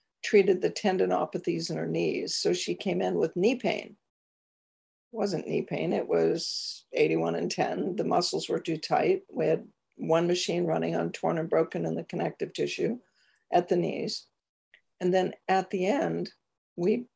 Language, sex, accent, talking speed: English, female, American, 170 wpm